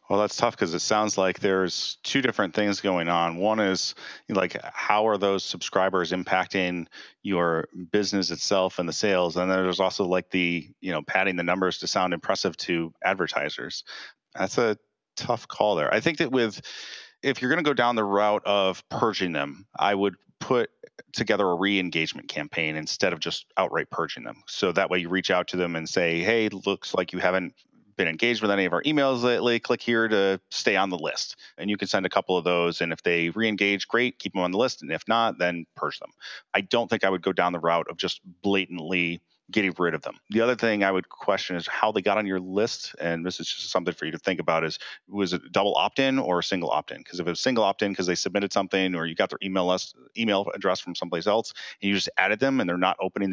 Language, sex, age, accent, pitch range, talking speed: English, male, 30-49, American, 90-100 Hz, 240 wpm